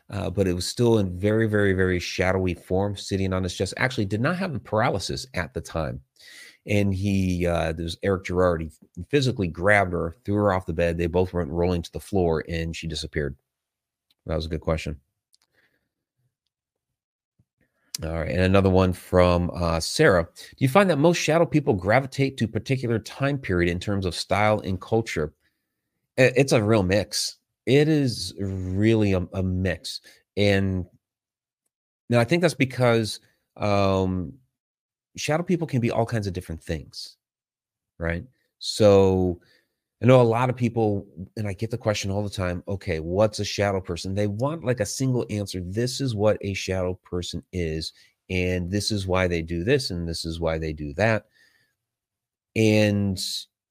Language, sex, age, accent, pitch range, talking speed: English, male, 30-49, American, 90-115 Hz, 170 wpm